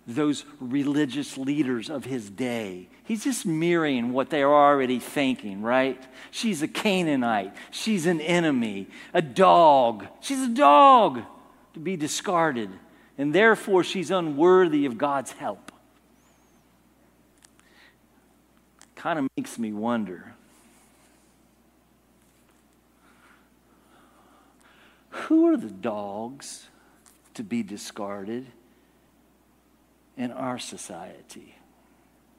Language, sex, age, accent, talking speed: English, male, 50-69, American, 95 wpm